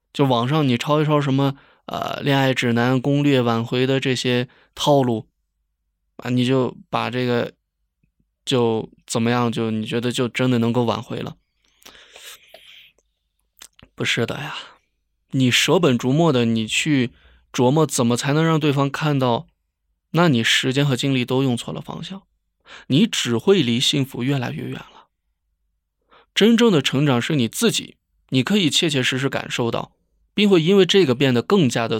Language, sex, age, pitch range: Chinese, male, 20-39, 115-150 Hz